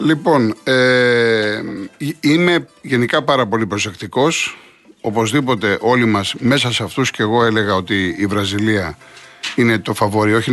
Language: Greek